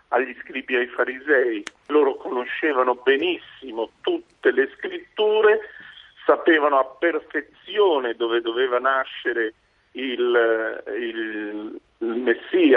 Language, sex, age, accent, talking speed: Italian, male, 50-69, native, 100 wpm